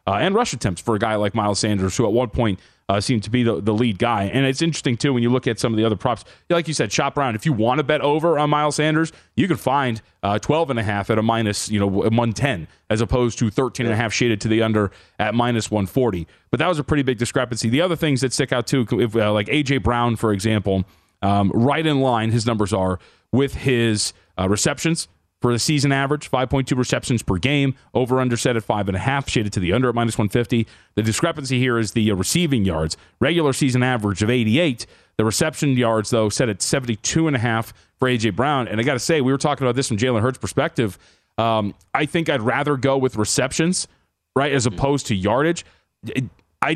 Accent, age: American, 30-49